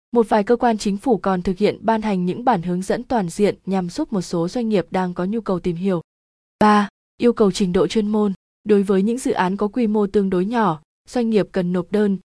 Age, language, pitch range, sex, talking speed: 20-39, Vietnamese, 190-235 Hz, female, 255 wpm